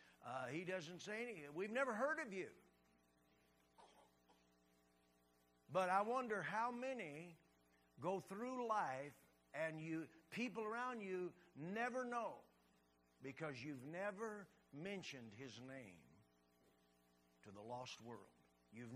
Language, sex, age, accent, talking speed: English, male, 60-79, American, 115 wpm